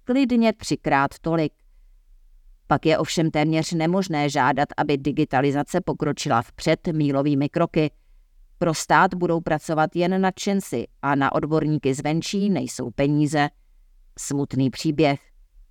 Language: Czech